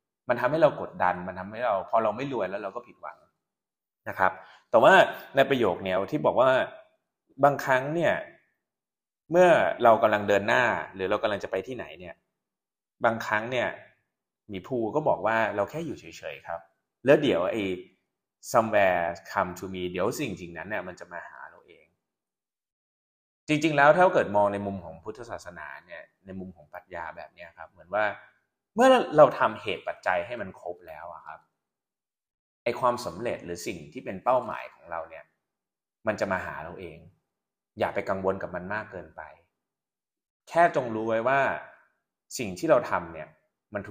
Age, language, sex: 20-39, Thai, male